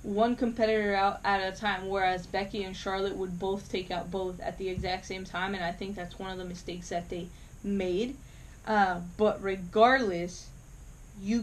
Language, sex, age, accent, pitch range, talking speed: English, female, 20-39, American, 185-215 Hz, 185 wpm